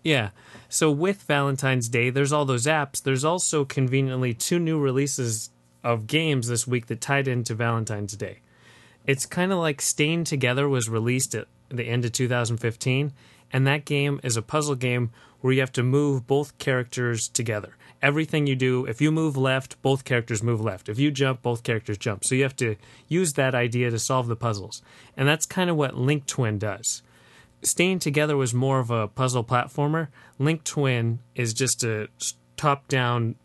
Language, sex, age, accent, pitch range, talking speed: English, male, 30-49, American, 115-135 Hz, 185 wpm